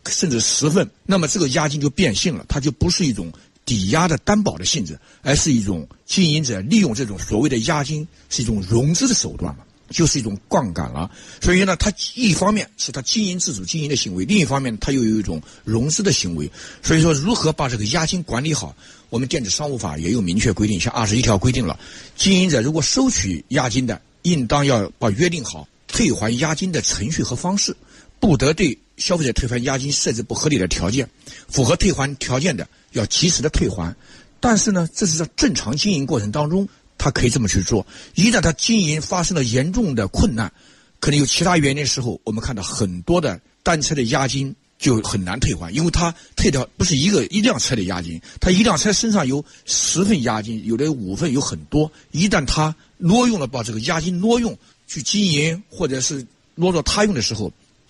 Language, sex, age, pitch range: Chinese, male, 60-79, 120-180 Hz